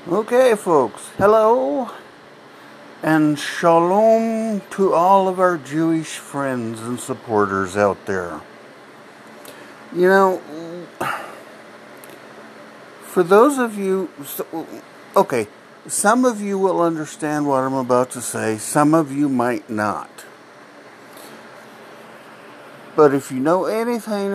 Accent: American